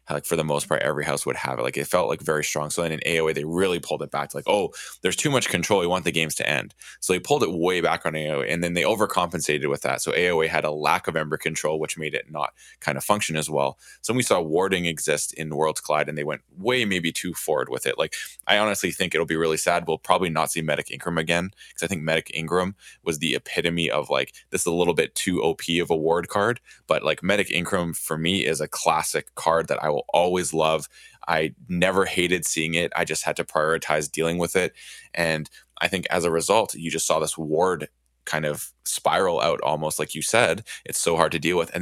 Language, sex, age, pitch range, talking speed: English, male, 20-39, 75-85 Hz, 250 wpm